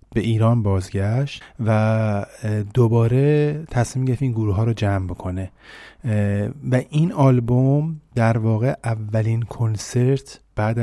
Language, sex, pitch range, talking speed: Persian, male, 100-120 Hz, 115 wpm